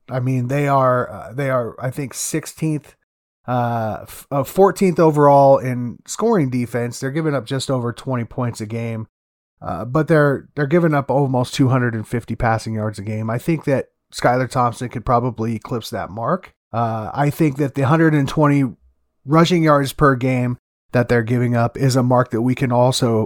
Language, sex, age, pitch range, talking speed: English, male, 30-49, 115-135 Hz, 180 wpm